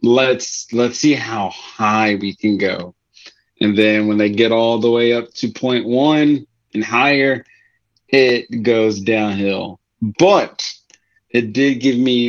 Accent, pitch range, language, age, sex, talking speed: American, 110-130 Hz, English, 30-49, male, 145 wpm